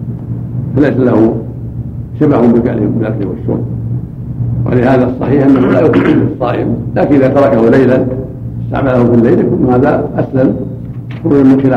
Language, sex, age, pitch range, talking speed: Arabic, male, 70-89, 115-130 Hz, 105 wpm